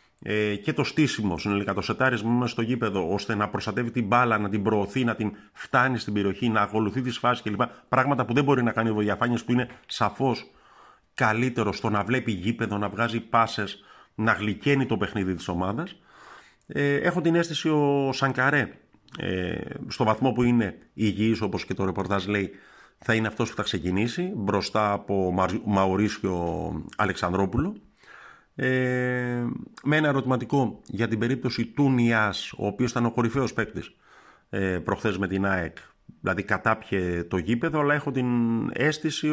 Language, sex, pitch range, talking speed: Greek, male, 100-130 Hz, 160 wpm